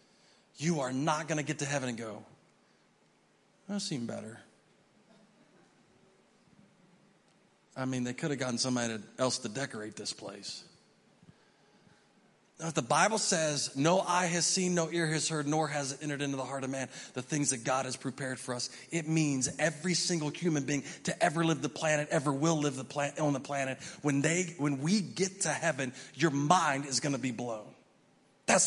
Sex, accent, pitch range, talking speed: male, American, 145-220 Hz, 185 wpm